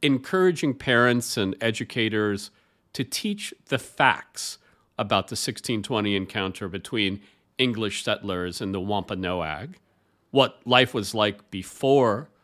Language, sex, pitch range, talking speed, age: English, male, 100-145 Hz, 110 wpm, 40-59